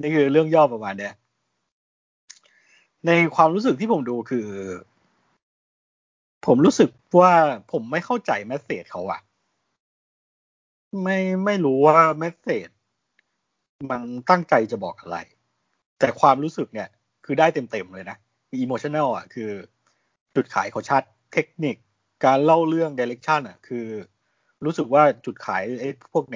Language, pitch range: Thai, 120-165 Hz